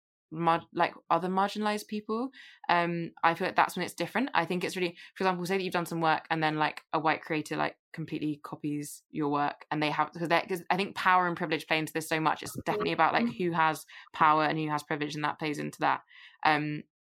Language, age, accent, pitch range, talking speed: English, 20-39, British, 155-185 Hz, 230 wpm